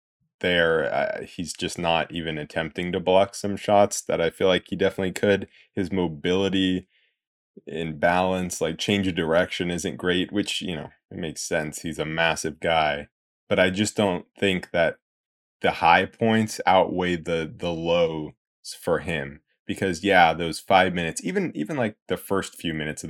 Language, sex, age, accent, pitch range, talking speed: English, male, 20-39, American, 80-95 Hz, 170 wpm